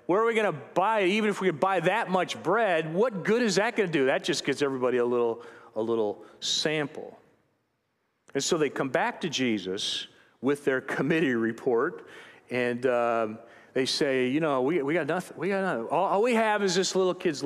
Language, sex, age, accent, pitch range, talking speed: English, male, 40-59, American, 115-185 Hz, 215 wpm